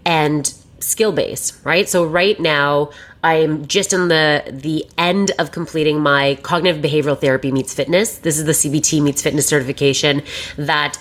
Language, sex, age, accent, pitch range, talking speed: English, female, 30-49, American, 145-175 Hz, 165 wpm